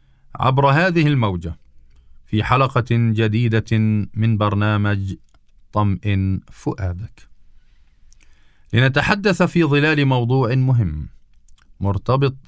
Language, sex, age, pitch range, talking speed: Arabic, male, 40-59, 100-130 Hz, 75 wpm